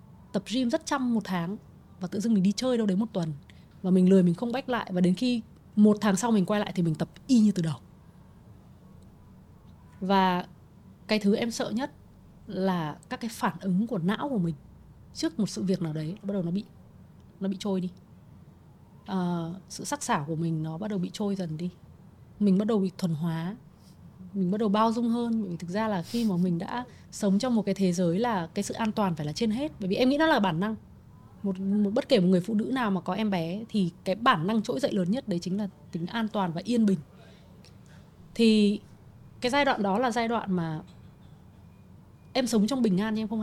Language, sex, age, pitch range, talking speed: Vietnamese, female, 20-39, 180-230 Hz, 240 wpm